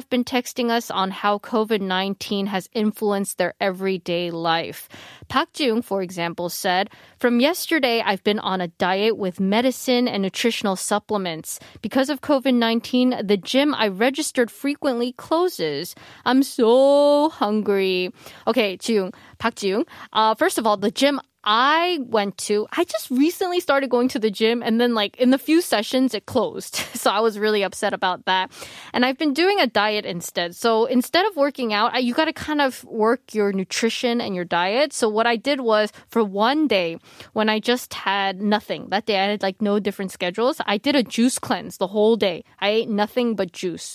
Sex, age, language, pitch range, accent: female, 20-39, Korean, 200-260 Hz, American